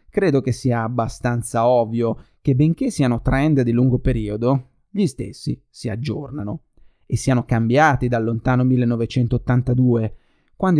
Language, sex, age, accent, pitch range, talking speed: Italian, male, 30-49, native, 120-165 Hz, 130 wpm